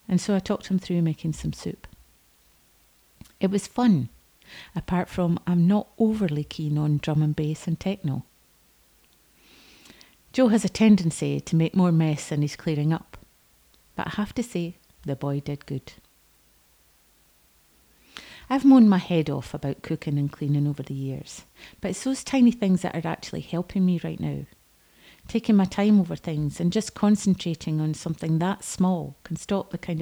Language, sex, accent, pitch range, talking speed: English, female, British, 145-195 Hz, 170 wpm